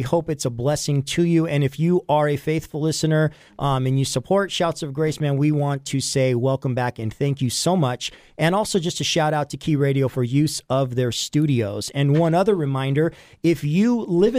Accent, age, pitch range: American, 40-59, 135-170 Hz